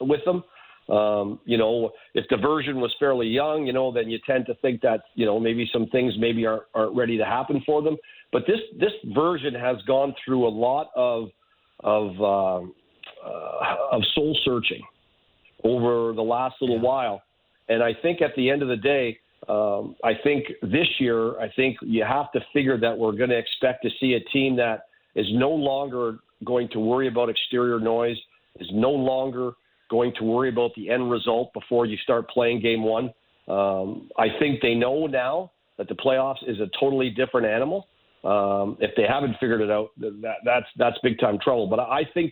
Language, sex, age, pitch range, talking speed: English, male, 50-69, 115-135 Hz, 195 wpm